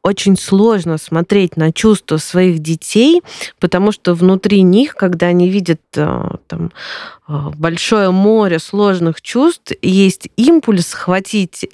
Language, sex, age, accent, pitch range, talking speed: Russian, female, 20-39, native, 170-205 Hz, 105 wpm